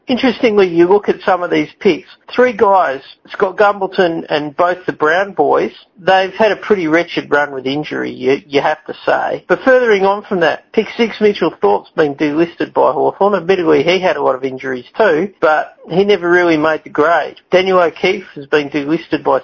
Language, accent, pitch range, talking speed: English, Australian, 155-205 Hz, 200 wpm